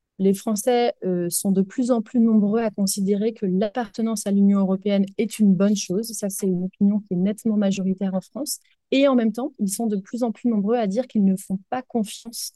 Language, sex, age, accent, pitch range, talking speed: French, female, 30-49, French, 190-225 Hz, 230 wpm